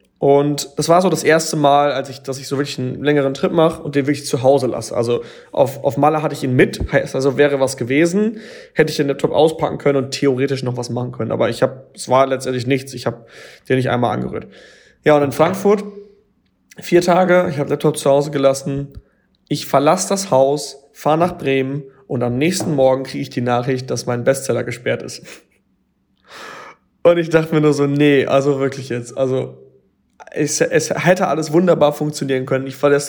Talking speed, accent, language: 205 wpm, German, German